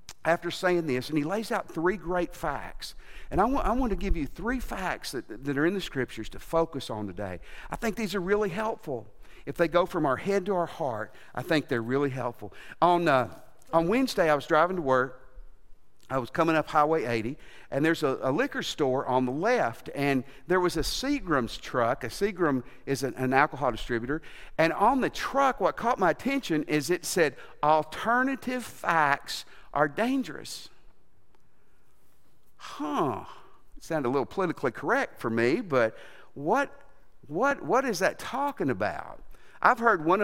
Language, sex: English, male